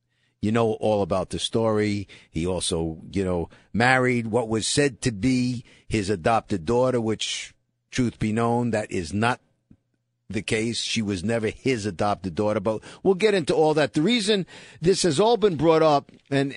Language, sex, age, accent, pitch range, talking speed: English, male, 50-69, American, 110-140 Hz, 180 wpm